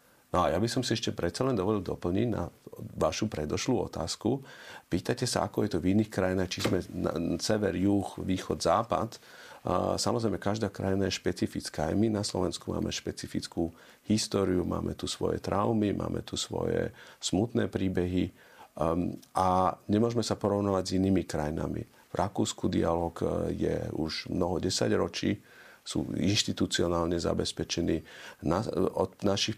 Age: 40-59